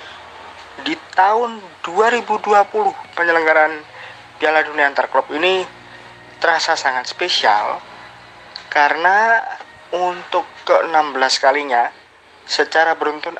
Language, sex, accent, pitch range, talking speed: Indonesian, male, native, 150-180 Hz, 75 wpm